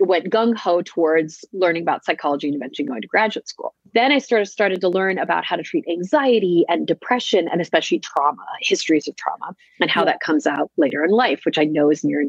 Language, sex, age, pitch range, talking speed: English, female, 30-49, 165-225 Hz, 215 wpm